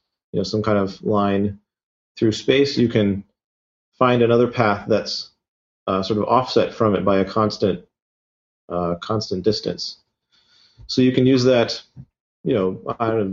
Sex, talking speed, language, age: male, 160 wpm, English, 30-49